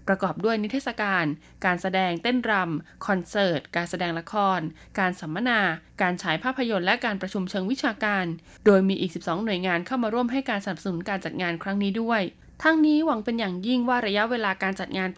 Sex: female